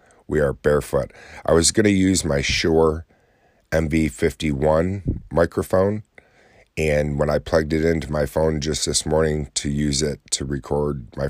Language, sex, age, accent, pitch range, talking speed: English, male, 40-59, American, 70-80 Hz, 155 wpm